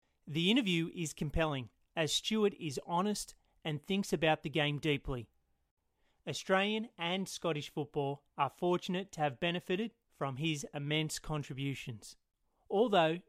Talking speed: 125 wpm